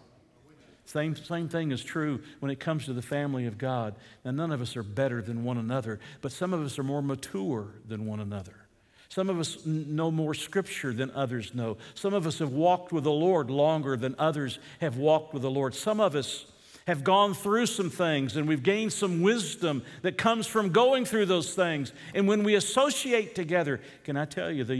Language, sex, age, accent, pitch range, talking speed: English, male, 50-69, American, 125-165 Hz, 210 wpm